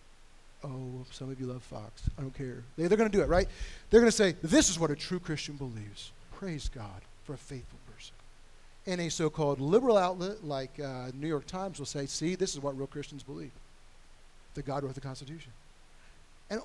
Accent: American